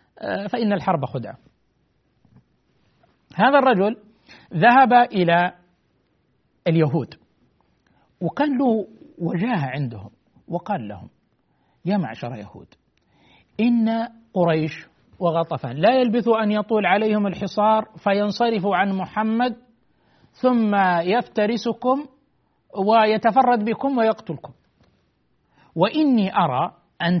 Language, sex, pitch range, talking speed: Arabic, male, 165-235 Hz, 80 wpm